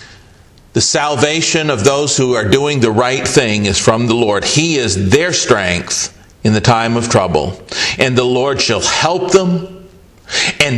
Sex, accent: male, American